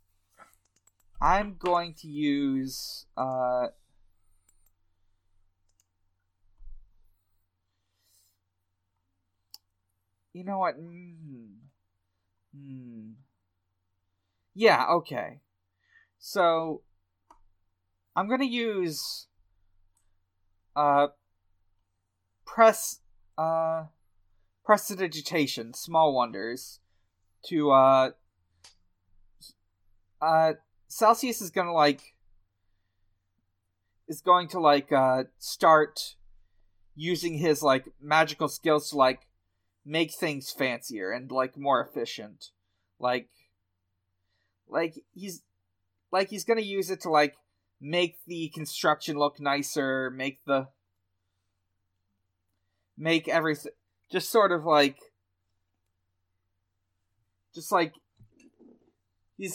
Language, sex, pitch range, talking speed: English, male, 90-155 Hz, 80 wpm